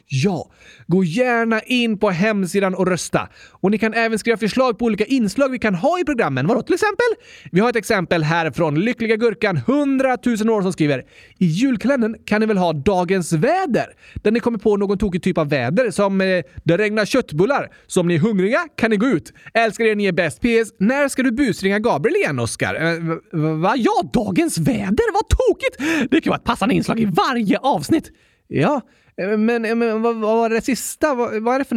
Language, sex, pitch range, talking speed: Swedish, male, 195-310 Hz, 200 wpm